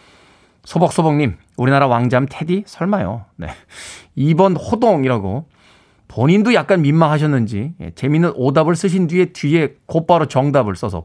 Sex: male